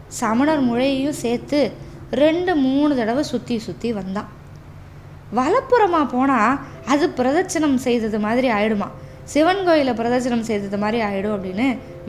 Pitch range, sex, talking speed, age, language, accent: 205-275 Hz, female, 115 wpm, 20-39, Tamil, native